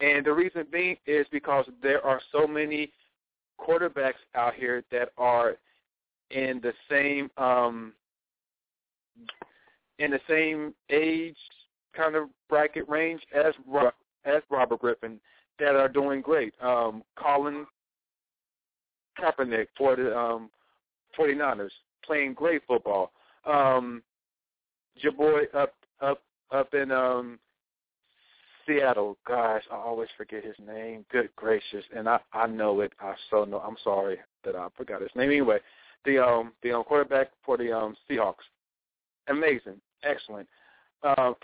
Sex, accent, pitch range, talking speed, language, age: male, American, 115-150 Hz, 130 wpm, English, 40-59